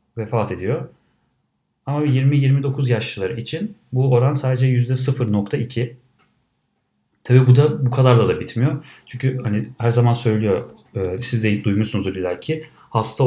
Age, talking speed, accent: 40-59, 130 wpm, Turkish